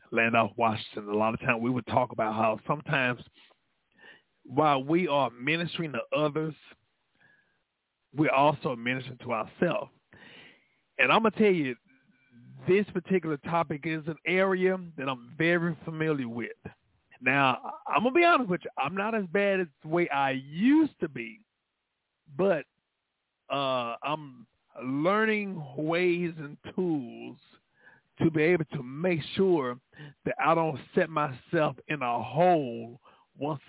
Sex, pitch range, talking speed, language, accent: male, 125-165 Hz, 145 wpm, English, American